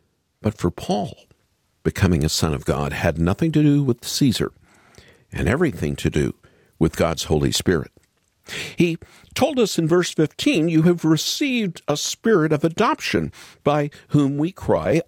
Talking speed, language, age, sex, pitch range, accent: 155 wpm, English, 50-69, male, 100-165 Hz, American